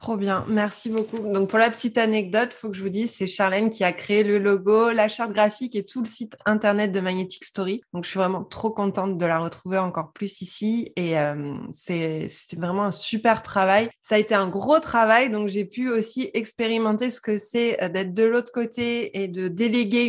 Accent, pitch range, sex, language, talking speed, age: French, 200-235 Hz, female, French, 220 wpm, 20-39